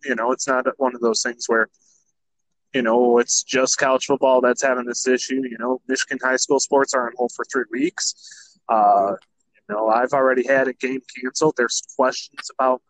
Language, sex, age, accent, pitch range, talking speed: English, male, 20-39, American, 125-140 Hz, 200 wpm